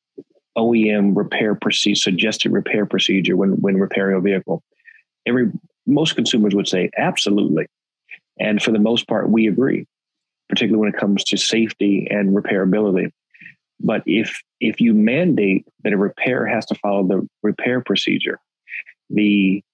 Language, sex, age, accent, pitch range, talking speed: English, male, 40-59, American, 95-110 Hz, 145 wpm